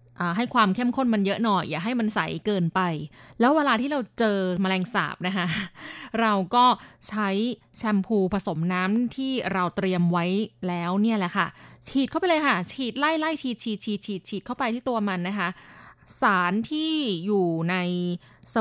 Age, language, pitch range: 20-39, Thai, 180-225 Hz